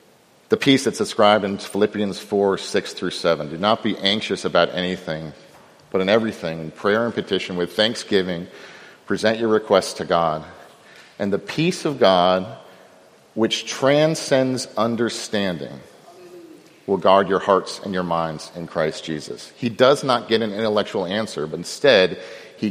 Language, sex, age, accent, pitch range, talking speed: English, male, 50-69, American, 100-130 Hz, 155 wpm